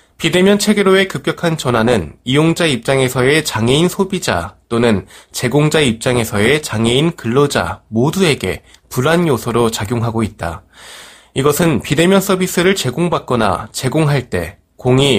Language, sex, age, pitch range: Korean, male, 20-39, 120-170 Hz